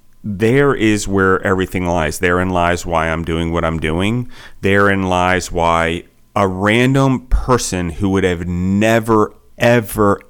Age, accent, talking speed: 30-49, American, 140 wpm